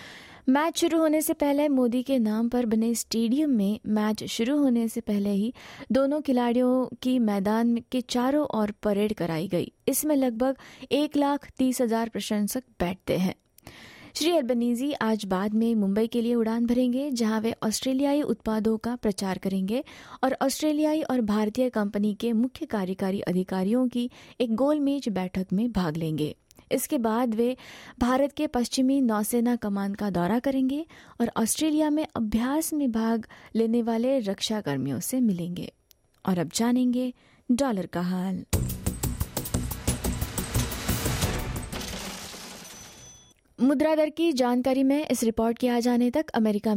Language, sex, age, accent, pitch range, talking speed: English, female, 20-39, Indian, 210-265 Hz, 120 wpm